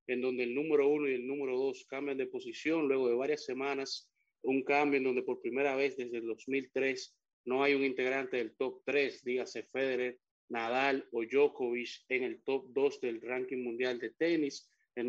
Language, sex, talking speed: Spanish, male, 190 wpm